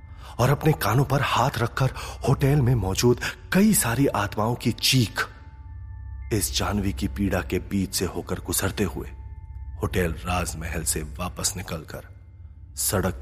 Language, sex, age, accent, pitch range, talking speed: Hindi, male, 30-49, native, 85-105 Hz, 140 wpm